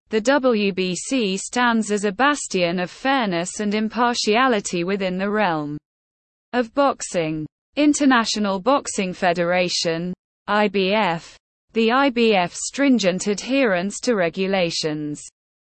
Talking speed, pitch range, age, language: 95 wpm, 180-250 Hz, 20-39, English